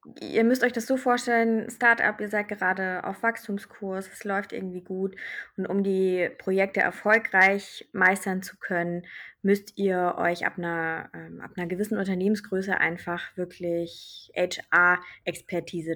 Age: 20-39